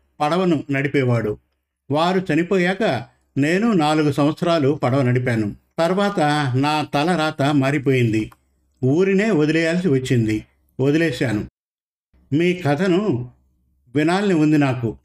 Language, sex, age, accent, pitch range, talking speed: Telugu, male, 50-69, native, 125-170 Hz, 90 wpm